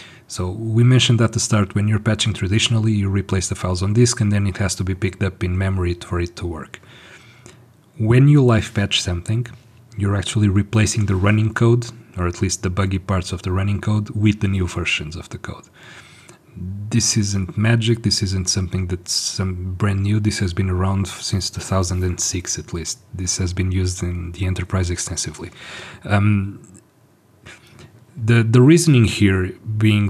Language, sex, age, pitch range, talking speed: English, male, 30-49, 95-115 Hz, 180 wpm